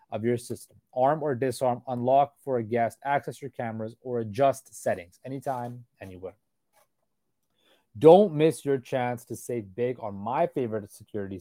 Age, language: 30-49, English